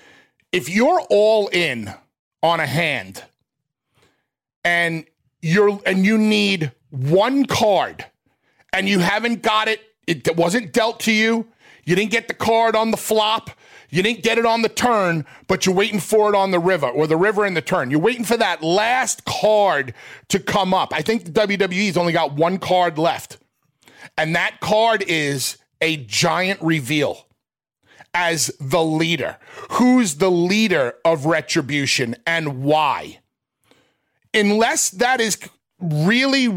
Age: 40-59